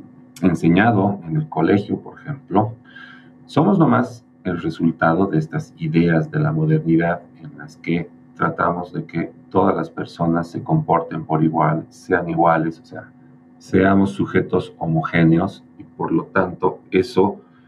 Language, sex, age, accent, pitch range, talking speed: Spanish, male, 40-59, Mexican, 85-130 Hz, 140 wpm